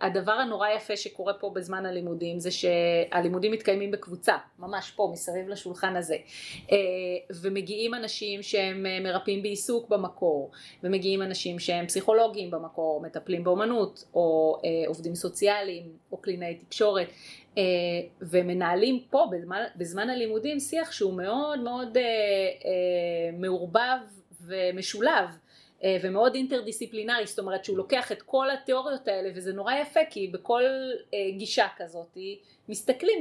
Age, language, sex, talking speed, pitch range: 30-49, Hebrew, female, 115 wpm, 185-225 Hz